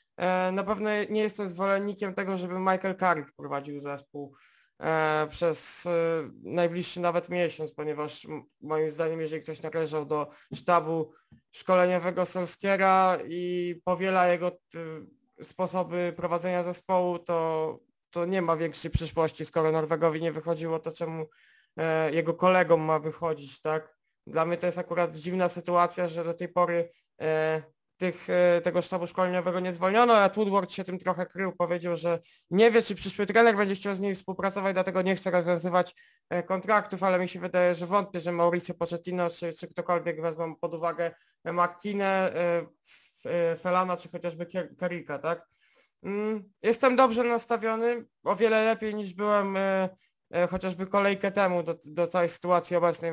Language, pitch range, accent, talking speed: Polish, 165-190 Hz, native, 140 wpm